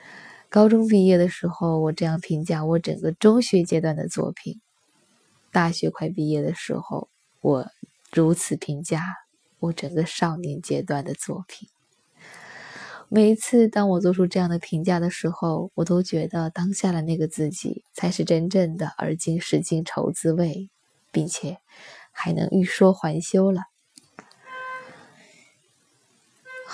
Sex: female